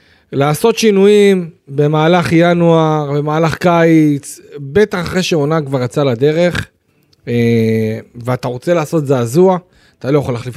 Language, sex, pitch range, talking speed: Hebrew, male, 125-160 Hz, 115 wpm